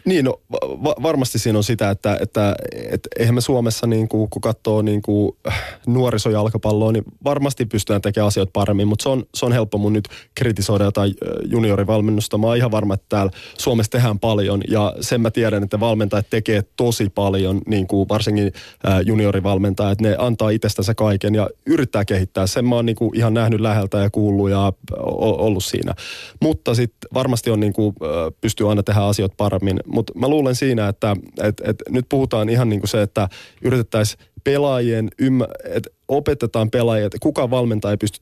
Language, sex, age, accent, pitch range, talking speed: Finnish, male, 20-39, native, 100-115 Hz, 180 wpm